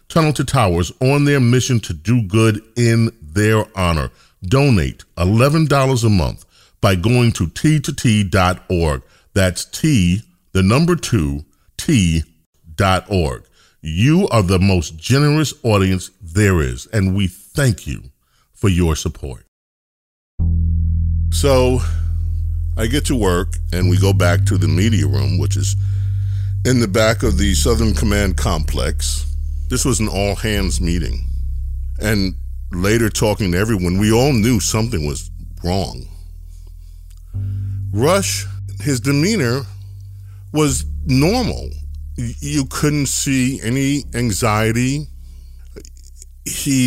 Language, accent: English, American